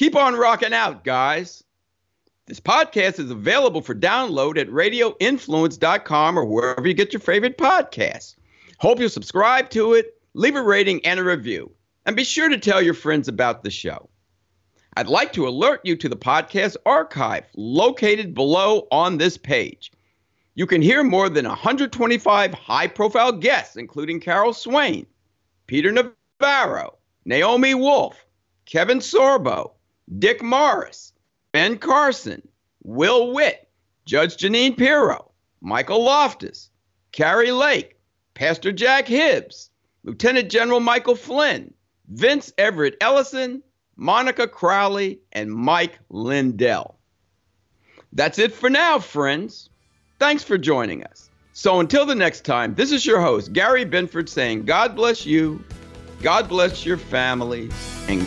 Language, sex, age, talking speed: English, male, 50-69, 135 wpm